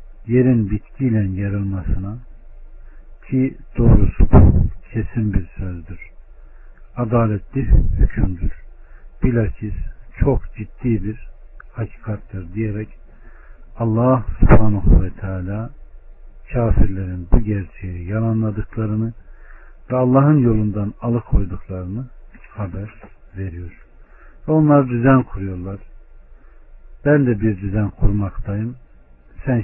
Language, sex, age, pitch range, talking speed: Turkish, male, 60-79, 90-110 Hz, 75 wpm